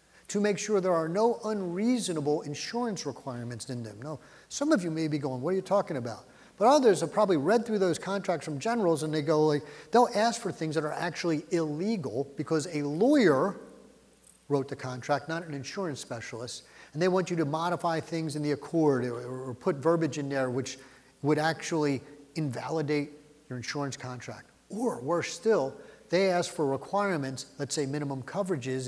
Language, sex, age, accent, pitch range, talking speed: English, male, 40-59, American, 135-190 Hz, 185 wpm